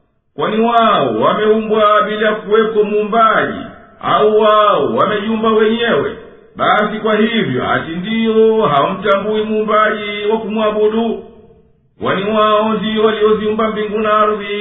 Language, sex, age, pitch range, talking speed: Swahili, male, 50-69, 210-220 Hz, 105 wpm